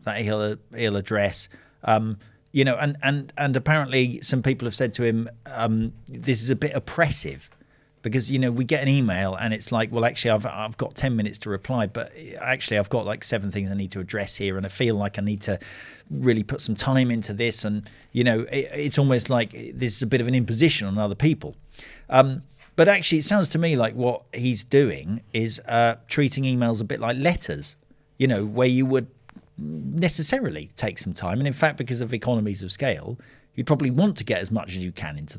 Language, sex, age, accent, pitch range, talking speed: English, male, 40-59, British, 110-135 Hz, 220 wpm